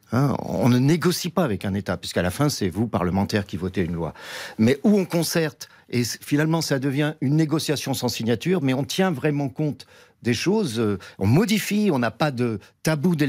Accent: French